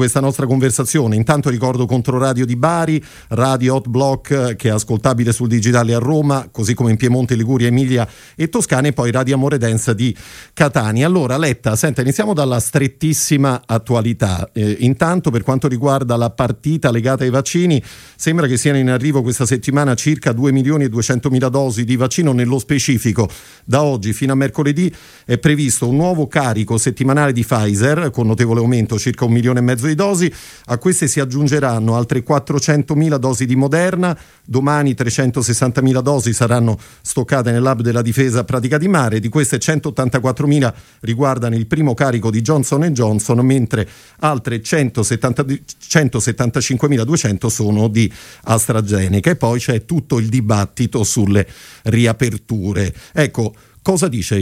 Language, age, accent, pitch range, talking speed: Italian, 40-59, native, 115-145 Hz, 155 wpm